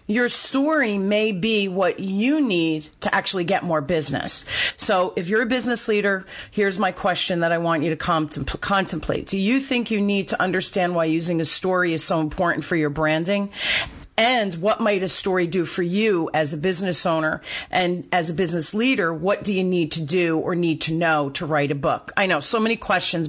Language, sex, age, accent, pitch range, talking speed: English, female, 40-59, American, 160-195 Hz, 205 wpm